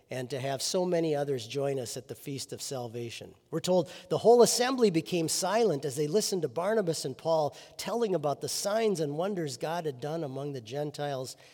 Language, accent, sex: English, American, male